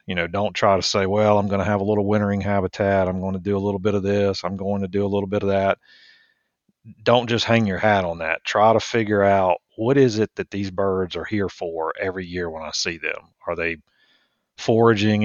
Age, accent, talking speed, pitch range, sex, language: 40-59, American, 245 wpm, 90-105 Hz, male, English